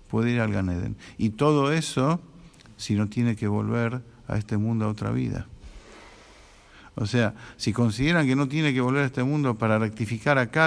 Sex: male